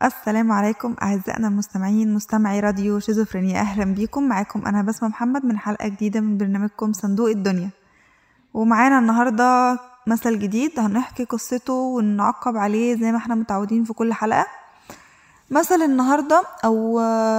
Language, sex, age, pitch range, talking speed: Arabic, female, 20-39, 220-280 Hz, 130 wpm